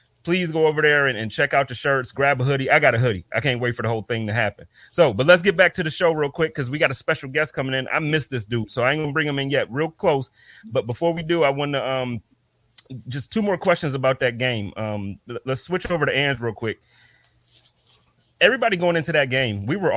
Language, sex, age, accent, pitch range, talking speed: English, male, 30-49, American, 115-155 Hz, 265 wpm